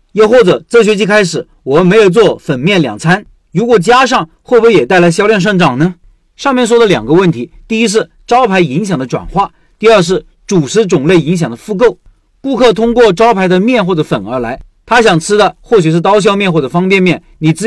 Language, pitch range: Chinese, 165-220 Hz